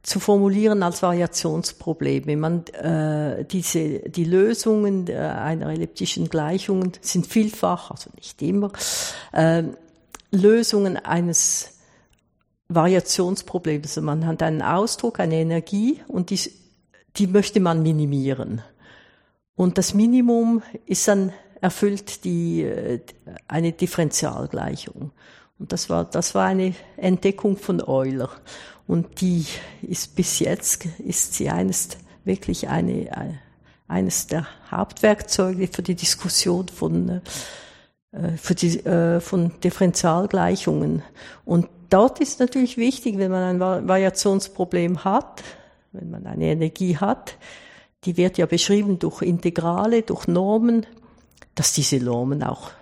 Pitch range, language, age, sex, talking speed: 165-200 Hz, German, 60-79, female, 110 wpm